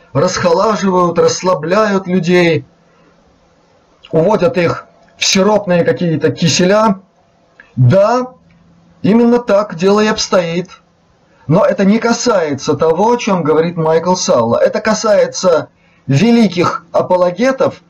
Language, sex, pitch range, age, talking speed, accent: Russian, male, 170-215 Hz, 30-49, 95 wpm, native